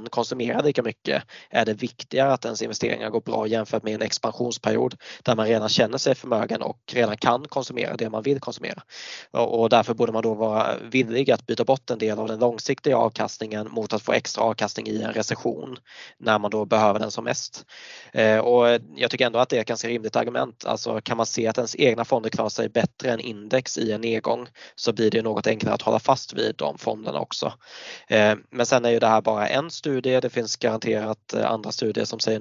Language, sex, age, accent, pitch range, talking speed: Swedish, male, 20-39, native, 110-125 Hz, 210 wpm